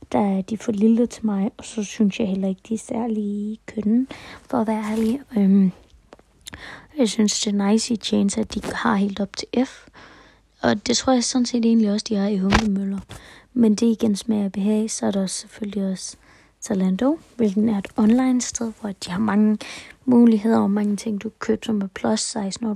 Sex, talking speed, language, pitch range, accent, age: female, 205 wpm, Danish, 200-230 Hz, native, 20-39